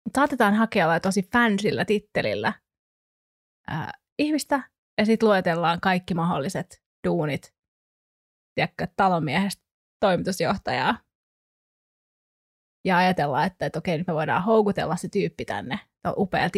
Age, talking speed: 20-39, 105 wpm